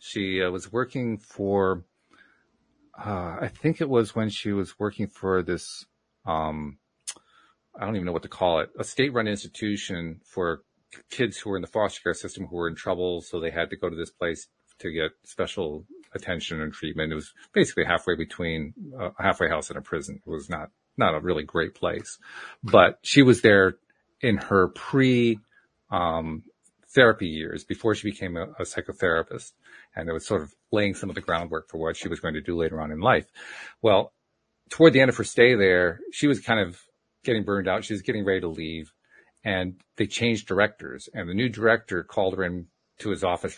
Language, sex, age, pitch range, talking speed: English, male, 40-59, 85-110 Hz, 205 wpm